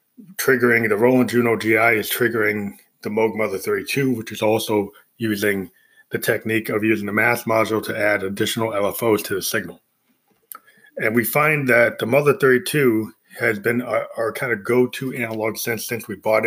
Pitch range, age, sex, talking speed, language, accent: 110-125 Hz, 30-49, male, 175 wpm, English, American